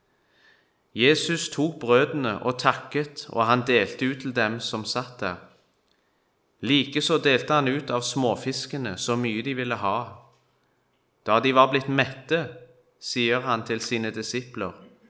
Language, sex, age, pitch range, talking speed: English, male, 30-49, 120-145 Hz, 145 wpm